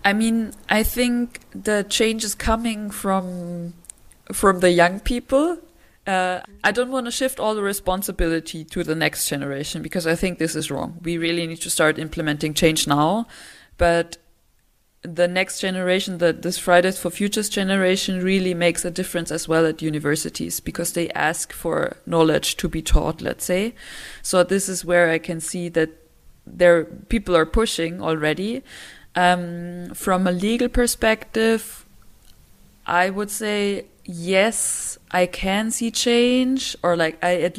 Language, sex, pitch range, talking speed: English, female, 170-210 Hz, 155 wpm